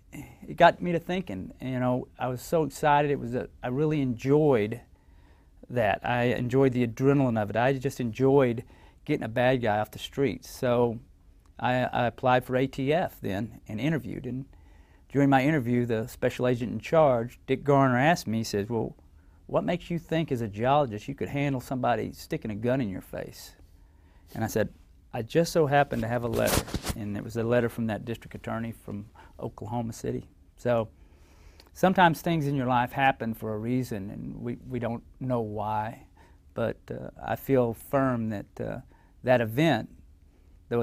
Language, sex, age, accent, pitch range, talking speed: English, male, 40-59, American, 100-135 Hz, 180 wpm